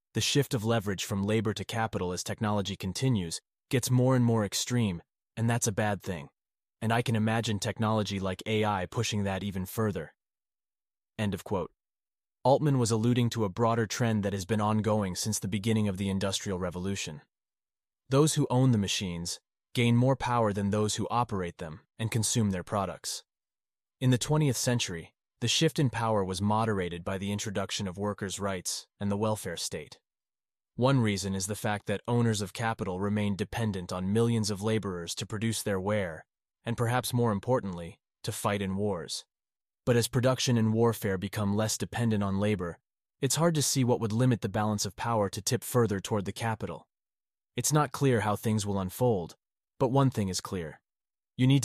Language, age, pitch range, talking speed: English, 30-49, 100-120 Hz, 185 wpm